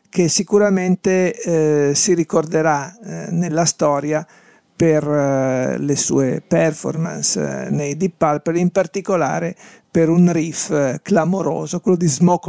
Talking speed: 130 wpm